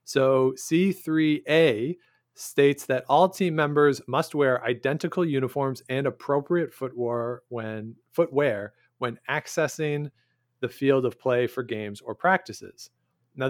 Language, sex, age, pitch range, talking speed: English, male, 40-59, 120-155 Hz, 110 wpm